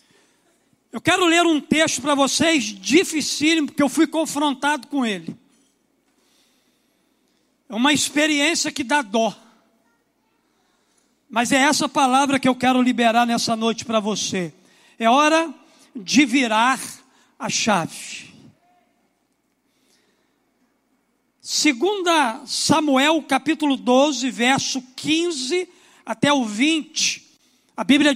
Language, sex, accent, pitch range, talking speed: Portuguese, male, Brazilian, 255-310 Hz, 105 wpm